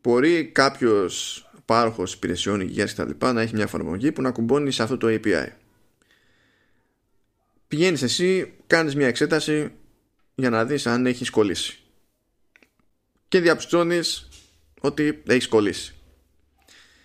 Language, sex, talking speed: Greek, male, 125 wpm